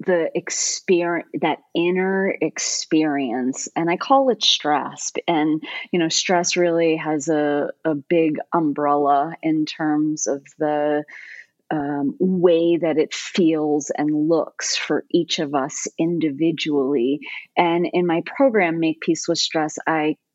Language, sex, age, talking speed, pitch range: English, female, 30-49, 135 wpm, 155-190 Hz